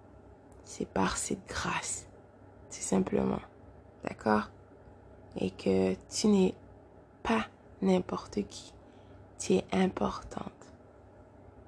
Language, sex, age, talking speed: French, female, 20-39, 85 wpm